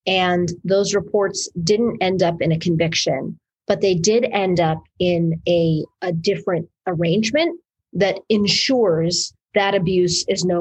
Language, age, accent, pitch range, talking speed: English, 30-49, American, 175-220 Hz, 140 wpm